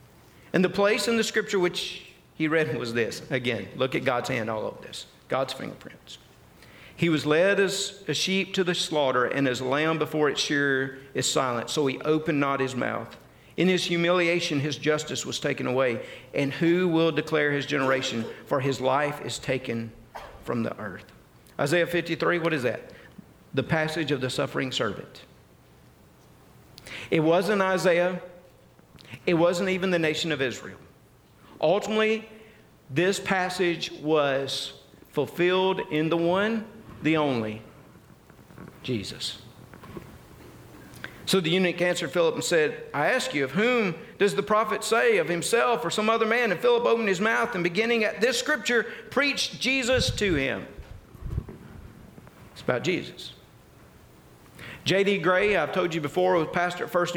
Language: English